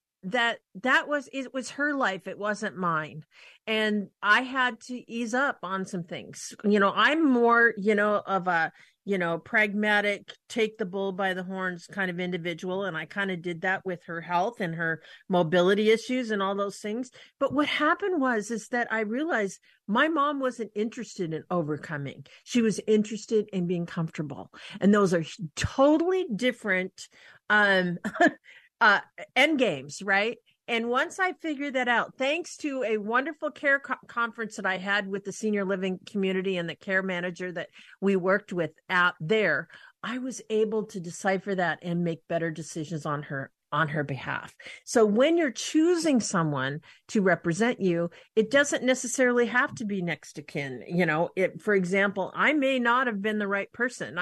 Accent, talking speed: American, 180 wpm